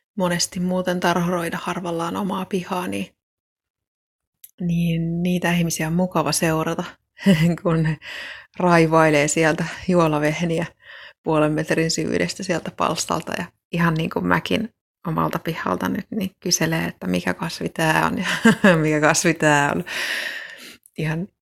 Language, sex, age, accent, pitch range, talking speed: Finnish, female, 30-49, native, 160-185 Hz, 120 wpm